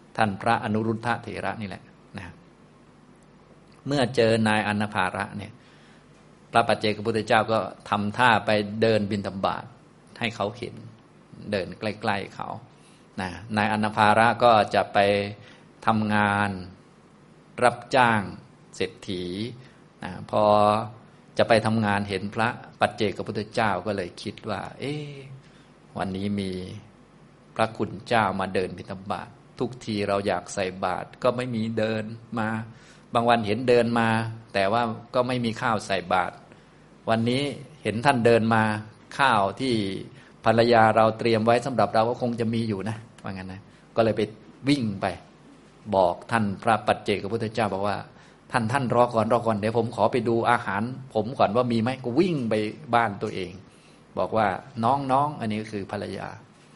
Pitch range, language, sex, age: 100-115 Hz, Thai, male, 20-39